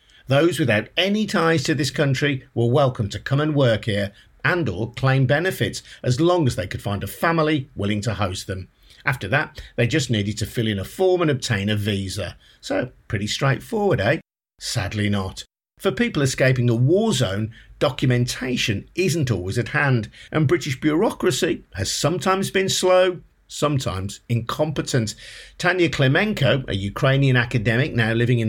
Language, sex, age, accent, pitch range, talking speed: English, male, 50-69, British, 110-150 Hz, 165 wpm